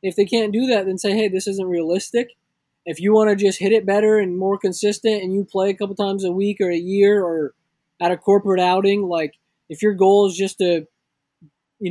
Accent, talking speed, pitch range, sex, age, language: American, 225 wpm, 170-200 Hz, male, 20-39, English